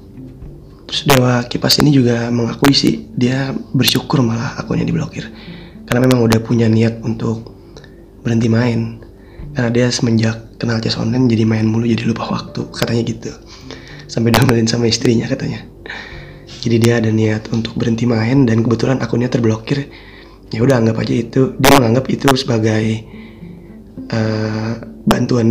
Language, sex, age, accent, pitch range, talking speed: Indonesian, male, 20-39, native, 115-130 Hz, 145 wpm